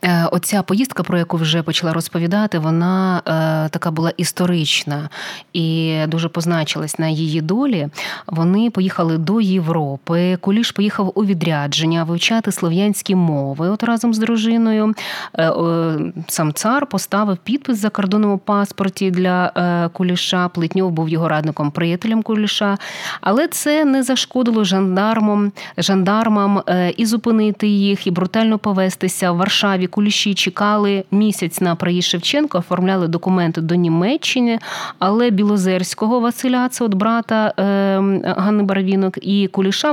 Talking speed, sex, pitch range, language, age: 130 wpm, female, 170-215 Hz, Ukrainian, 20-39